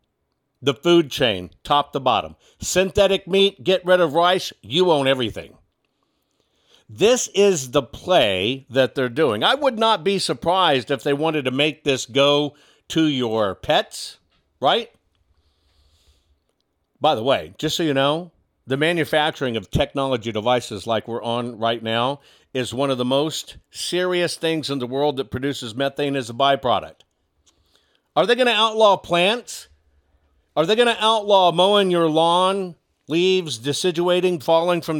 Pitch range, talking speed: 120-175 Hz, 155 wpm